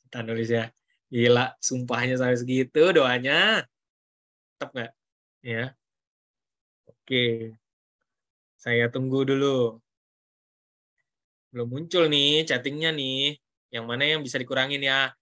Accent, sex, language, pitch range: native, male, Indonesian, 125-150 Hz